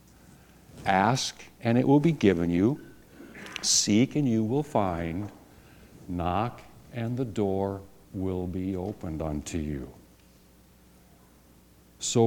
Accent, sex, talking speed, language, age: American, male, 110 wpm, English, 60-79